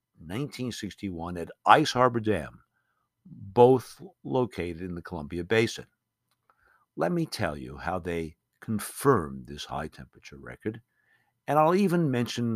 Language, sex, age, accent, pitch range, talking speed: English, male, 60-79, American, 95-135 Hz, 125 wpm